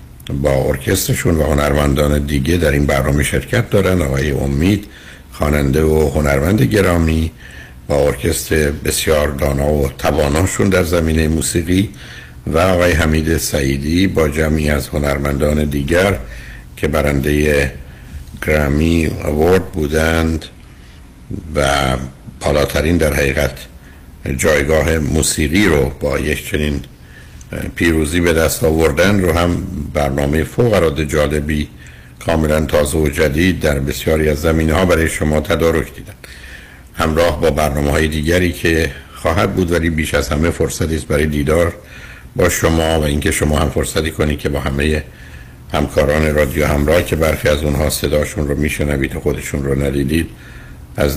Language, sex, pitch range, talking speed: Persian, male, 70-80 Hz, 135 wpm